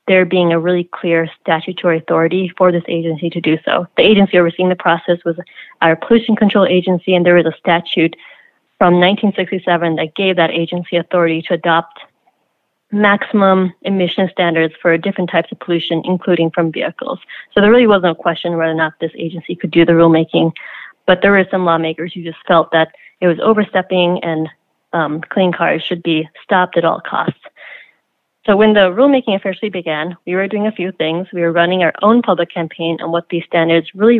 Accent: American